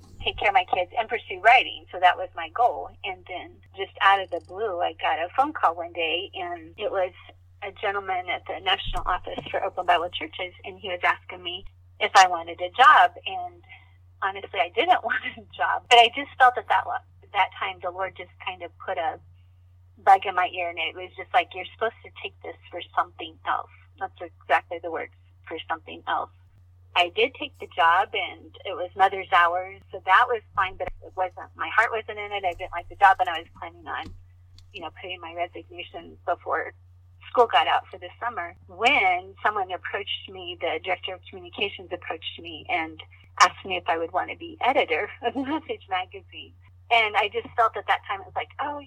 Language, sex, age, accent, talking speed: English, female, 30-49, American, 215 wpm